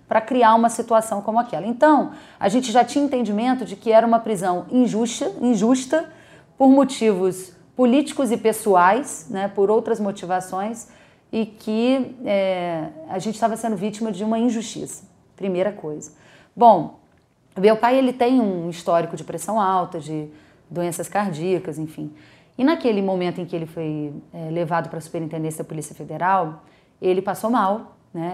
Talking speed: 155 wpm